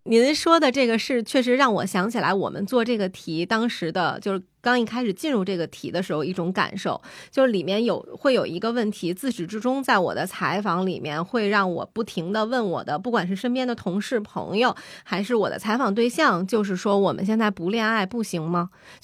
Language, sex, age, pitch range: Chinese, female, 20-39, 185-245 Hz